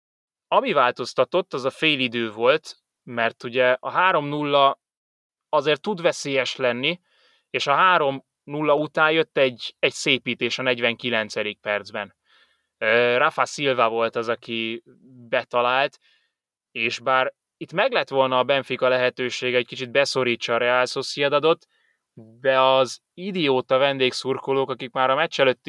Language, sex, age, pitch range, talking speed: Hungarian, male, 20-39, 115-135 Hz, 130 wpm